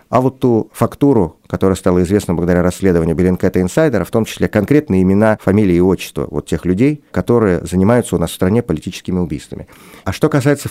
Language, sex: Russian, male